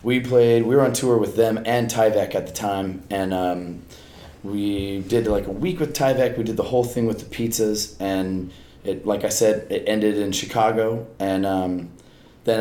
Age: 30-49